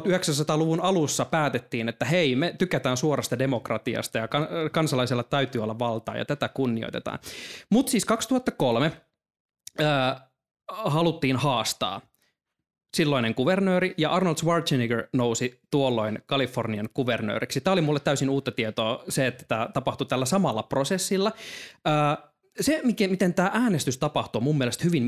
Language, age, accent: Finnish, 20-39, native